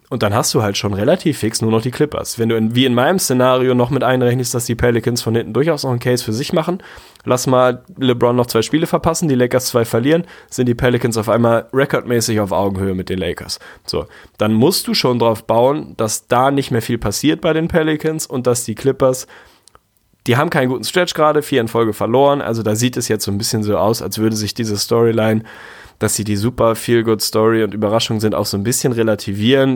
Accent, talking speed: German, 230 wpm